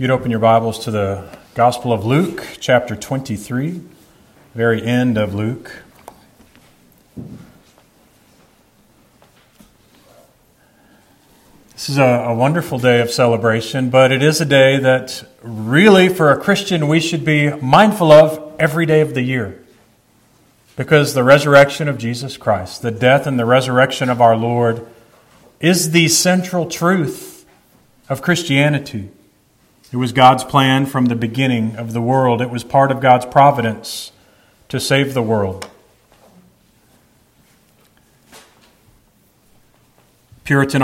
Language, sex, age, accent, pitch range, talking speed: English, male, 40-59, American, 115-145 Hz, 125 wpm